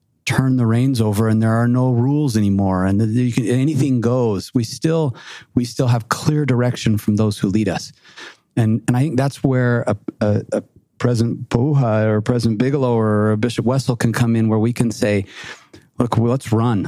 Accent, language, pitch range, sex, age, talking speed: American, English, 110-130 Hz, male, 40-59, 200 wpm